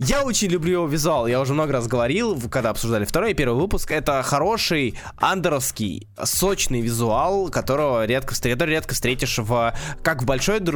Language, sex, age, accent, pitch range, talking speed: Russian, male, 20-39, native, 125-180 Hz, 160 wpm